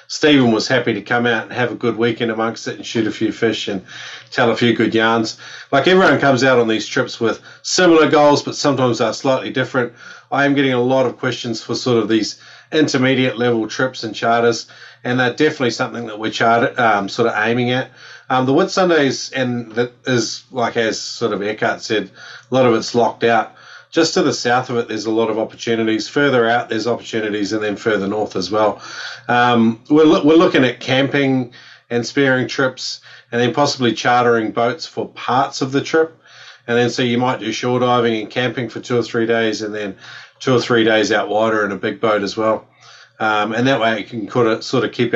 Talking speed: 220 wpm